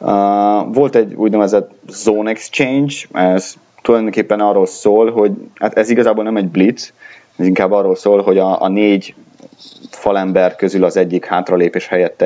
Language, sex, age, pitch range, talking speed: Hungarian, male, 30-49, 90-105 Hz, 150 wpm